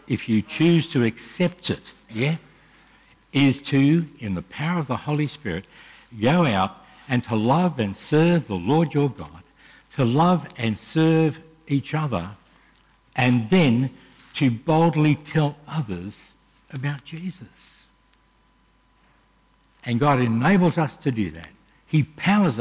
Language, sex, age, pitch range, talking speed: English, male, 60-79, 110-150 Hz, 135 wpm